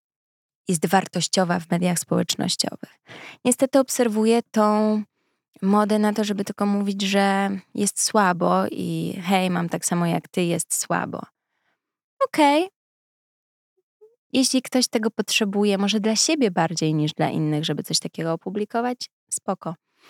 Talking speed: 130 wpm